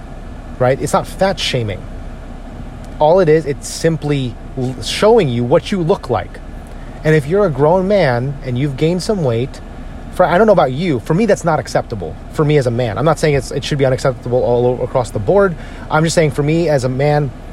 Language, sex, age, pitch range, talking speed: English, male, 30-49, 120-155 Hz, 215 wpm